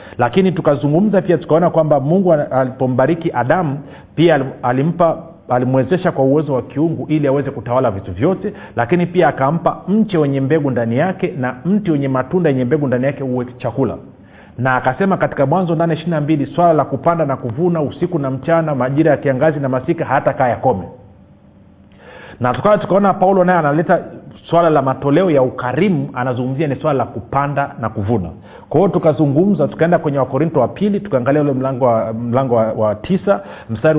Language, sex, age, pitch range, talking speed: Swahili, male, 40-59, 125-165 Hz, 170 wpm